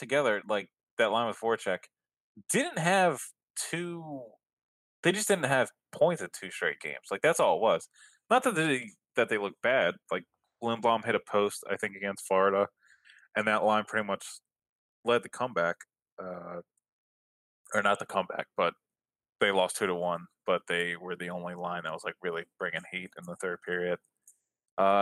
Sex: male